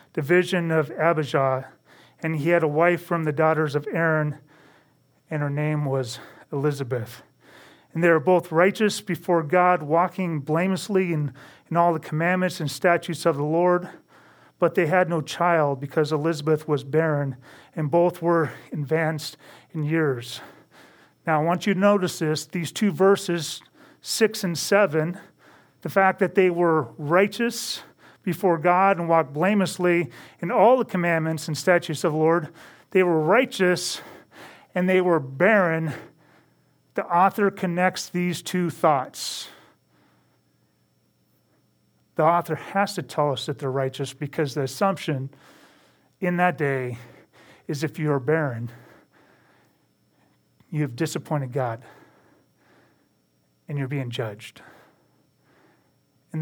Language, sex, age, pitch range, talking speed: English, male, 40-59, 150-180 Hz, 135 wpm